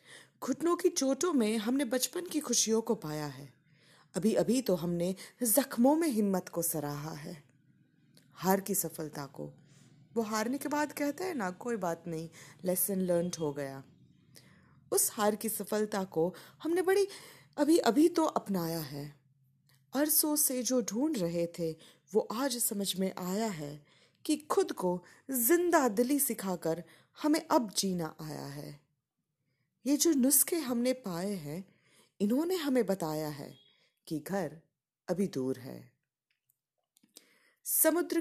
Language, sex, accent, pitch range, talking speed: Hindi, female, native, 160-270 Hz, 140 wpm